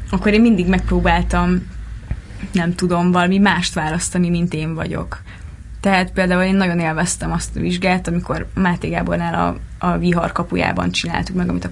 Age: 20-39